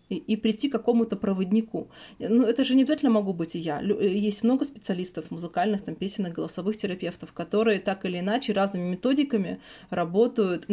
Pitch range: 185-225 Hz